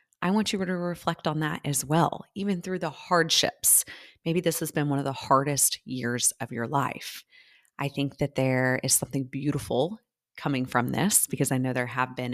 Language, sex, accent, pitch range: English, female, American, 135-185 Hz